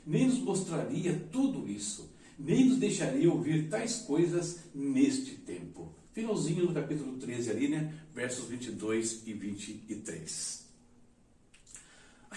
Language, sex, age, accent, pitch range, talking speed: Portuguese, male, 60-79, Brazilian, 140-225 Hz, 115 wpm